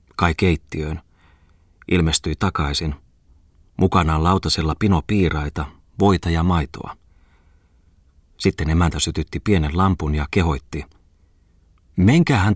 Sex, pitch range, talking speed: male, 75-90 Hz, 85 wpm